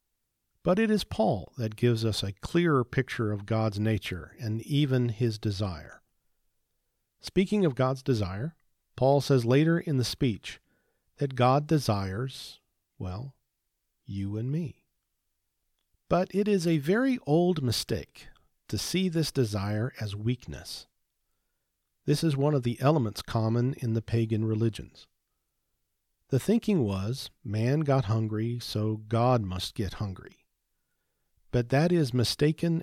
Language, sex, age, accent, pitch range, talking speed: English, male, 50-69, American, 110-140 Hz, 135 wpm